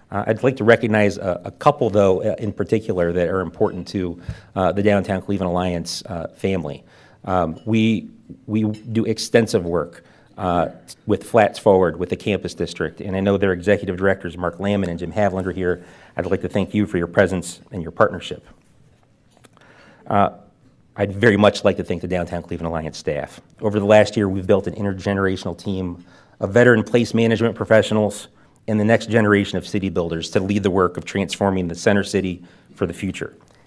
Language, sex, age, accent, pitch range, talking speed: English, male, 40-59, American, 90-105 Hz, 185 wpm